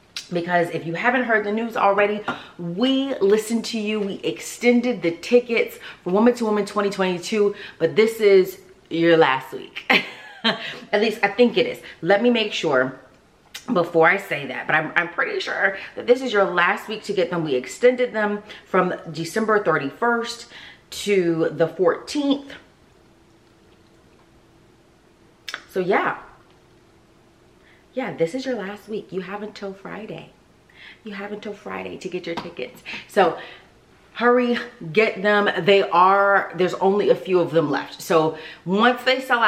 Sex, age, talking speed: female, 30-49, 155 wpm